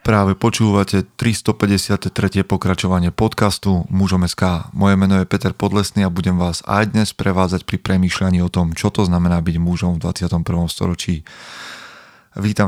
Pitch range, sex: 90-100 Hz, male